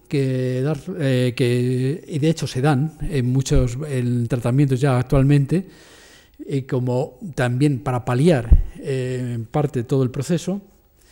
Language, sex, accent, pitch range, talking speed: Spanish, male, Spanish, 130-165 Hz, 115 wpm